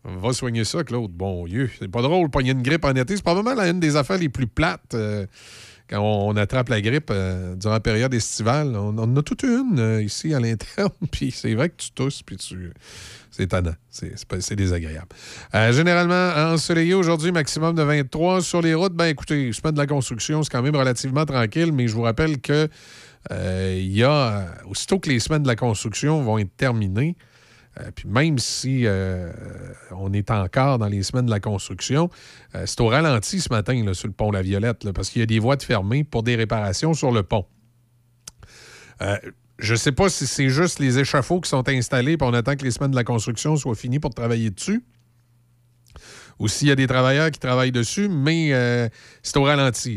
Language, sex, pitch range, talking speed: French, male, 110-145 Hz, 215 wpm